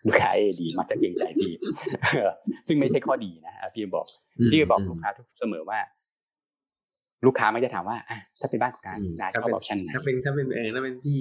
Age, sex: 30-49, male